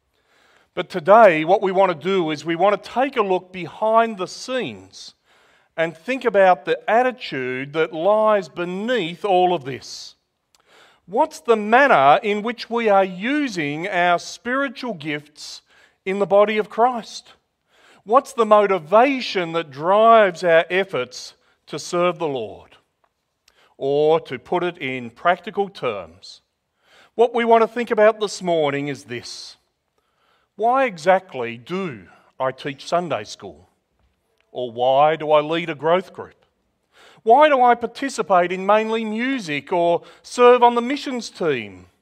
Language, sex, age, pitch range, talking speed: English, male, 40-59, 160-225 Hz, 145 wpm